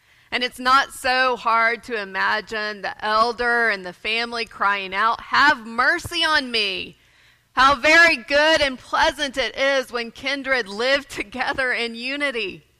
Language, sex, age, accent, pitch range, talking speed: English, female, 30-49, American, 210-265 Hz, 145 wpm